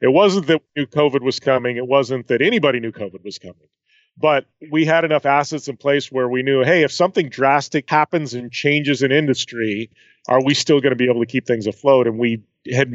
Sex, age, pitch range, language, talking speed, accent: male, 30-49, 120-145 Hz, English, 225 wpm, American